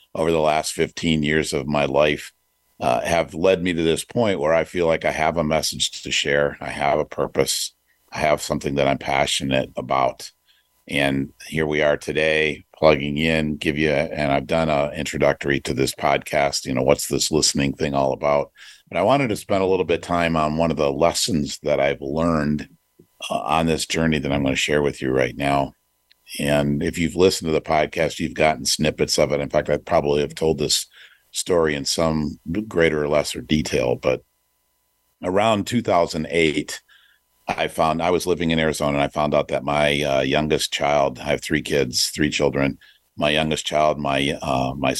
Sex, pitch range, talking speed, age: male, 70-80 Hz, 195 wpm, 50-69